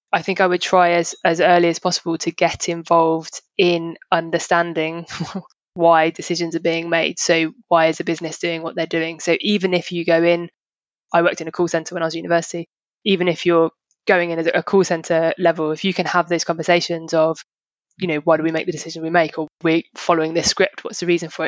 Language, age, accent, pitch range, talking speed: English, 20-39, British, 165-175 Hz, 230 wpm